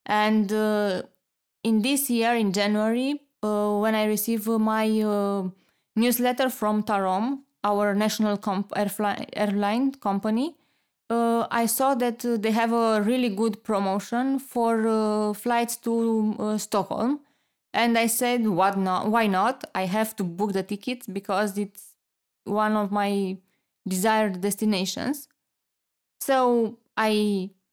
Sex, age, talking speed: female, 20-39, 130 wpm